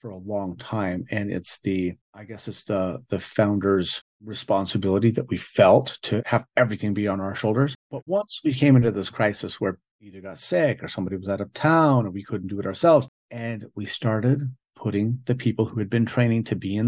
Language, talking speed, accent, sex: English, 215 wpm, American, male